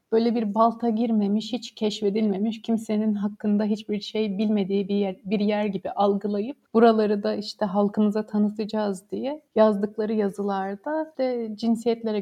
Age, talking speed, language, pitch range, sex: 30-49, 135 wpm, Turkish, 195-225 Hz, female